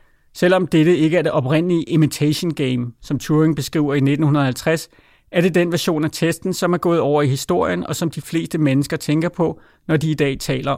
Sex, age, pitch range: male, 30-49, 145-175 Hz